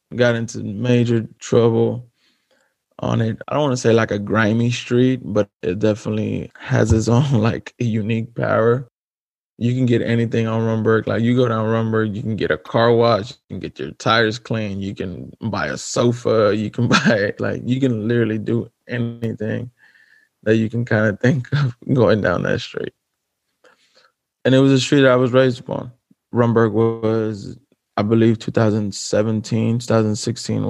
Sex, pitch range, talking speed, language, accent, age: male, 110-120 Hz, 175 wpm, English, American, 20-39